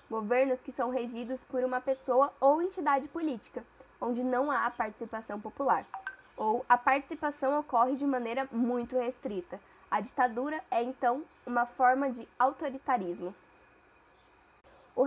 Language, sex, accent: Portuguese, female, Brazilian